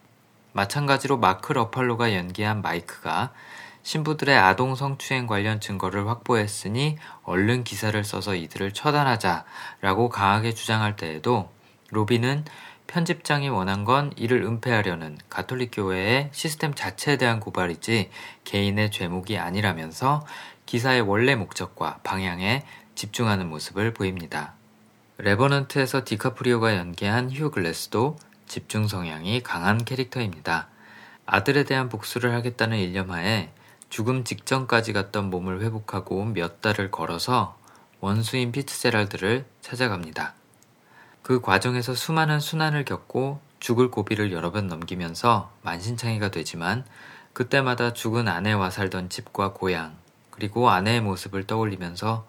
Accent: native